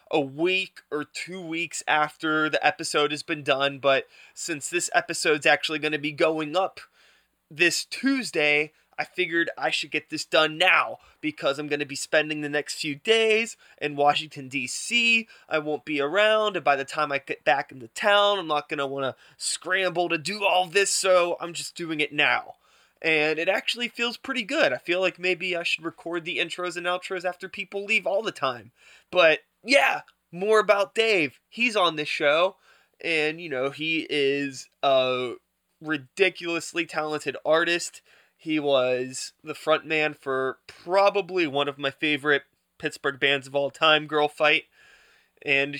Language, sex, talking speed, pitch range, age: English, male, 175 wpm, 145-180 Hz, 20-39